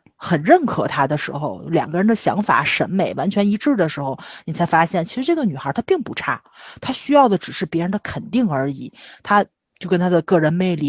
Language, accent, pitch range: Chinese, native, 165-210 Hz